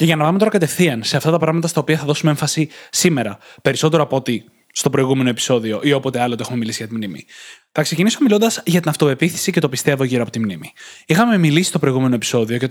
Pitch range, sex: 140-185 Hz, male